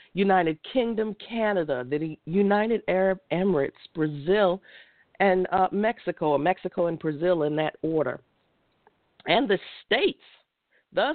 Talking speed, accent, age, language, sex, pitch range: 115 wpm, American, 50-69, English, female, 170-225 Hz